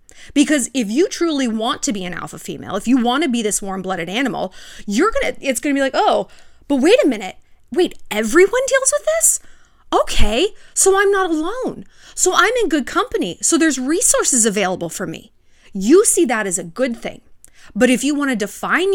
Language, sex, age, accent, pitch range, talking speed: English, female, 30-49, American, 215-315 Hz, 210 wpm